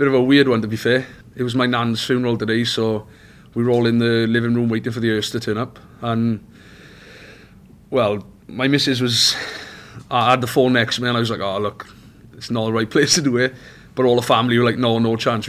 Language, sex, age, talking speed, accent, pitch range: English, male, 30-49, 250 wpm, British, 110-120 Hz